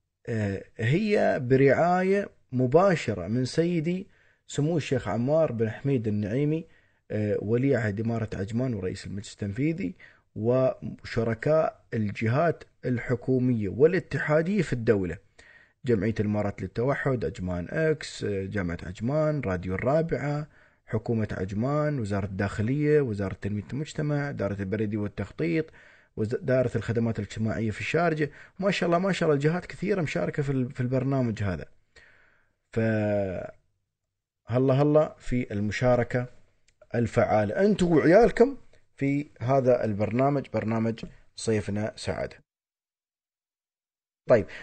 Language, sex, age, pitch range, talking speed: Arabic, male, 20-39, 105-155 Hz, 100 wpm